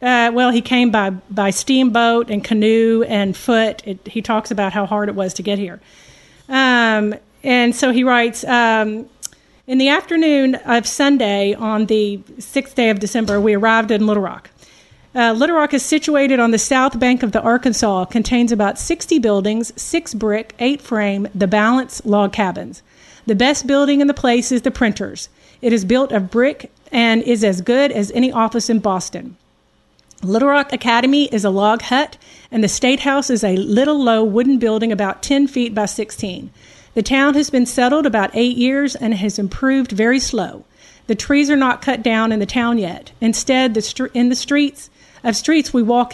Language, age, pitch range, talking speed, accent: English, 40-59, 210-260 Hz, 185 wpm, American